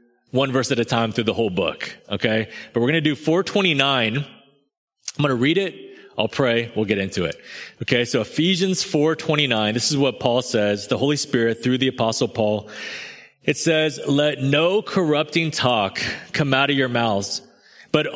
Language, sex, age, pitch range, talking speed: English, male, 30-49, 110-155 Hz, 180 wpm